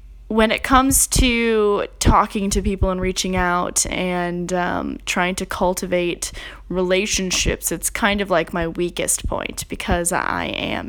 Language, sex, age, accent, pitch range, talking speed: English, female, 10-29, American, 180-205 Hz, 145 wpm